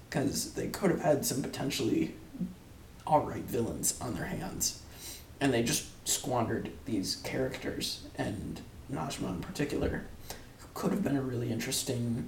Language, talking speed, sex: English, 130 wpm, male